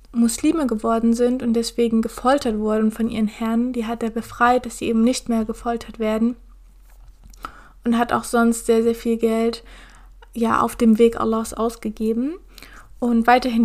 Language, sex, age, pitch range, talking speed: German, female, 20-39, 225-245 Hz, 165 wpm